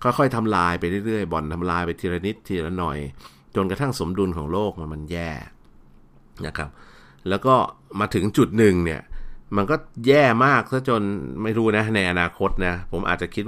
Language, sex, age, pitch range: Thai, male, 60-79, 85-110 Hz